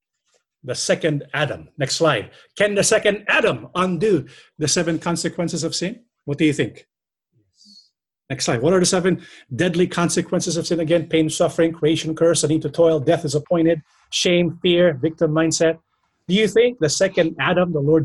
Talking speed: 175 wpm